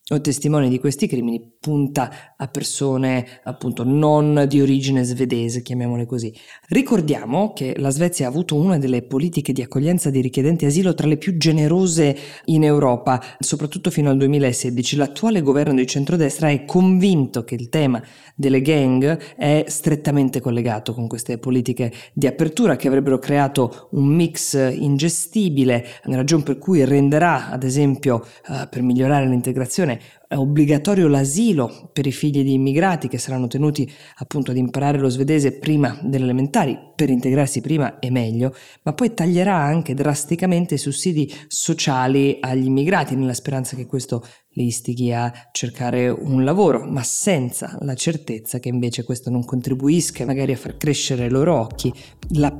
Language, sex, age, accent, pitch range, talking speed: Italian, female, 20-39, native, 125-150 Hz, 155 wpm